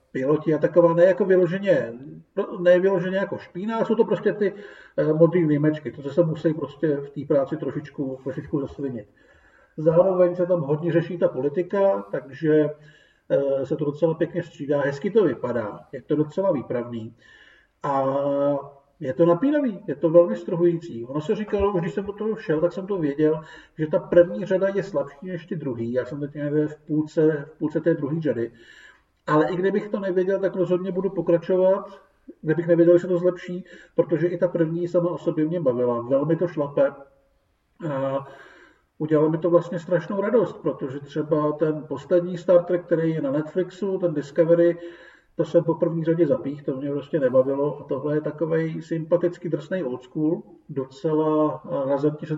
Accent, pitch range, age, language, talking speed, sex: native, 145-180 Hz, 50-69, Czech, 175 wpm, male